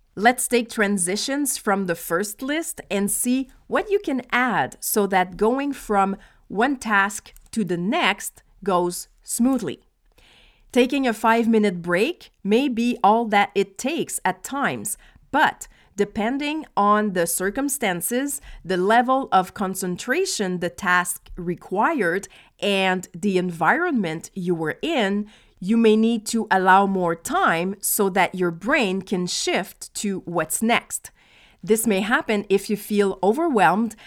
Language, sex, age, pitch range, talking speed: English, female, 40-59, 190-245 Hz, 135 wpm